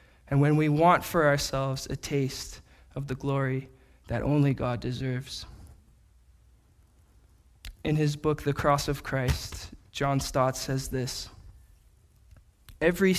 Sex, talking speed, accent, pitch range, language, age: male, 125 wpm, American, 110-145 Hz, English, 20-39